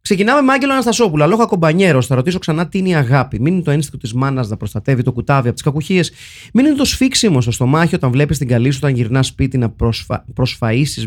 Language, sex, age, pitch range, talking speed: Greek, male, 30-49, 130-185 Hz, 220 wpm